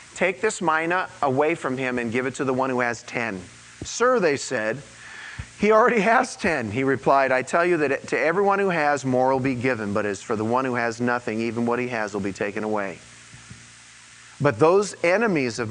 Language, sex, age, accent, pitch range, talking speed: English, male, 40-59, American, 125-165 Hz, 215 wpm